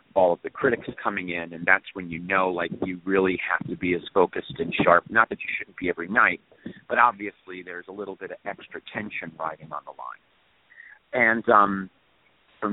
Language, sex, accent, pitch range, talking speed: English, male, American, 85-115 Hz, 205 wpm